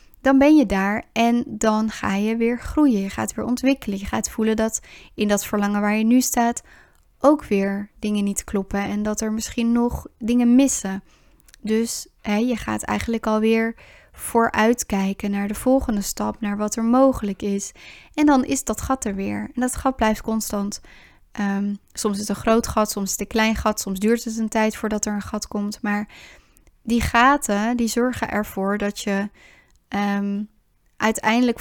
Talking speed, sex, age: 180 wpm, female, 10-29